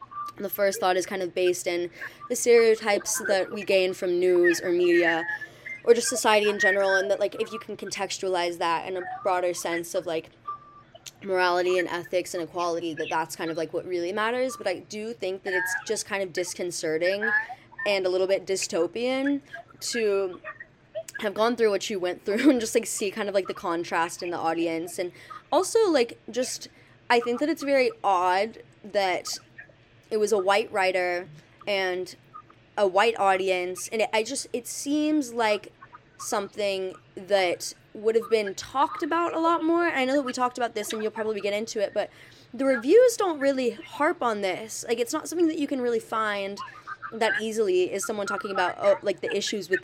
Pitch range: 185-255 Hz